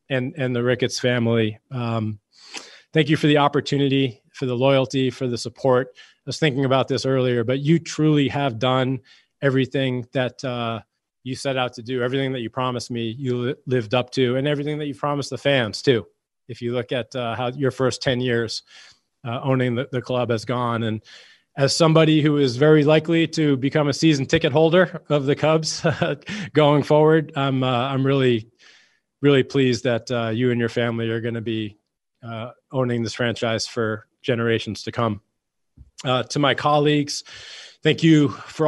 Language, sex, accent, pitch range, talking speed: English, male, American, 120-140 Hz, 185 wpm